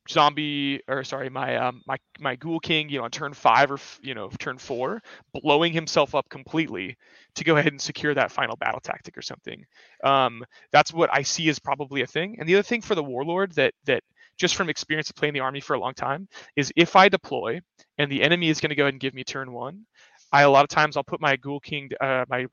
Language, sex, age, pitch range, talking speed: English, male, 20-39, 135-160 Hz, 240 wpm